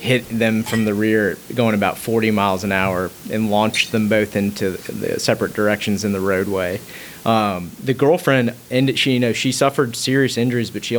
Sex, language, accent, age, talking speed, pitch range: male, English, American, 30-49, 190 wpm, 100-120 Hz